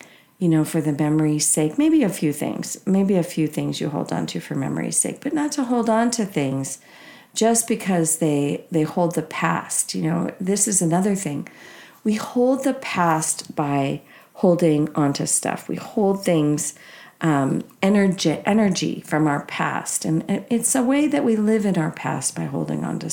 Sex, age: female, 50-69